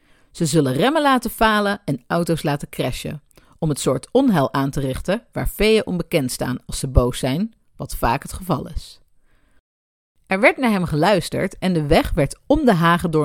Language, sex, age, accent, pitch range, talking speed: Dutch, female, 40-59, Dutch, 140-210 Hz, 190 wpm